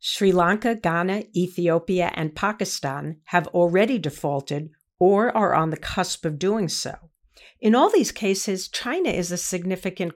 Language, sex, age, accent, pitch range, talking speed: English, female, 50-69, American, 165-205 Hz, 150 wpm